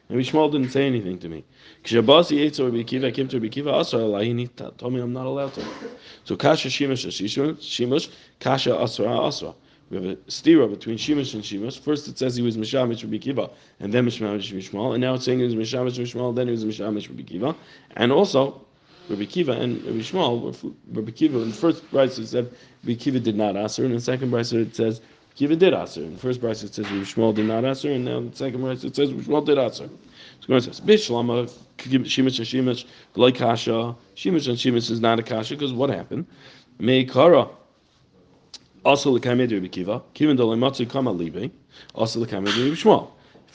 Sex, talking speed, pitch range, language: male, 205 wpm, 110-135 Hz, English